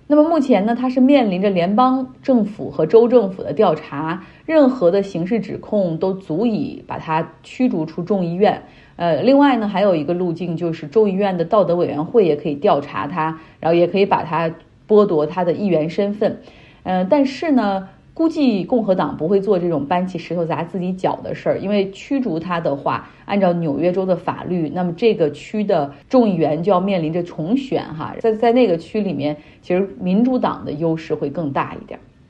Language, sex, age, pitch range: Chinese, female, 30-49, 165-215 Hz